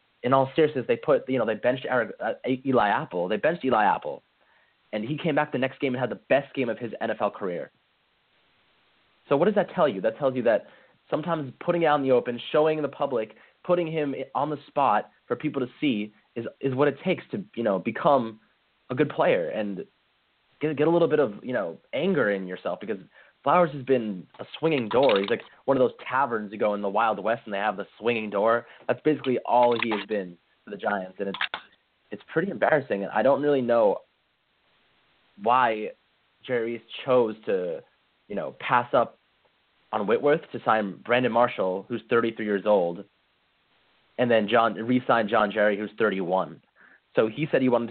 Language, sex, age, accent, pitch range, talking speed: English, male, 20-39, American, 110-145 Hz, 200 wpm